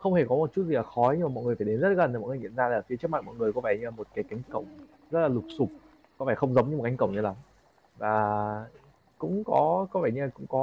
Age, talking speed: 20-39, 325 wpm